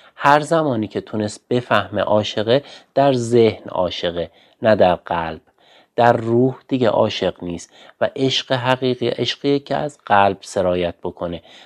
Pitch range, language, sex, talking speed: 100-130 Hz, Persian, male, 135 wpm